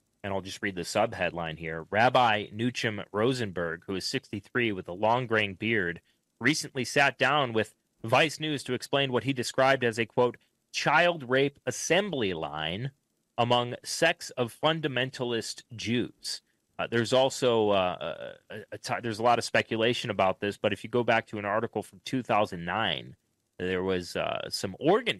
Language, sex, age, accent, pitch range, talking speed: English, male, 30-49, American, 105-130 Hz, 160 wpm